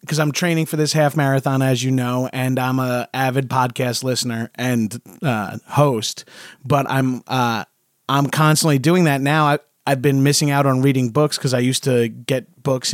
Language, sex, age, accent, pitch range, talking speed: English, male, 30-49, American, 130-155 Hz, 190 wpm